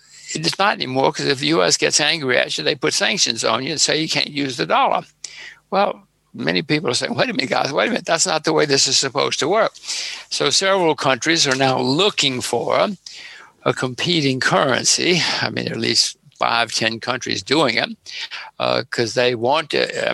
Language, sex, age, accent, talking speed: English, male, 60-79, American, 205 wpm